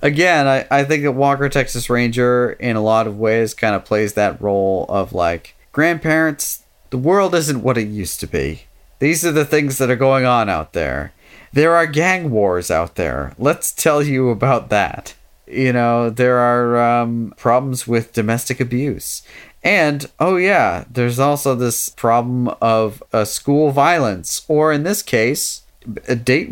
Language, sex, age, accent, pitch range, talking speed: English, male, 40-59, American, 105-140 Hz, 170 wpm